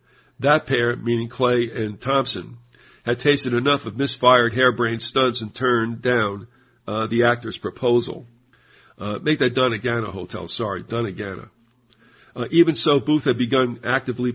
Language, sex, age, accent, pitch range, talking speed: English, male, 50-69, American, 120-130 Hz, 140 wpm